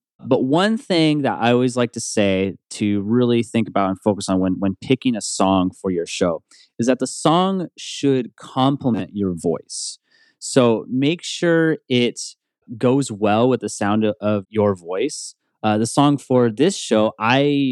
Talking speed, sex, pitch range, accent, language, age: 175 wpm, male, 105-135 Hz, American, English, 30-49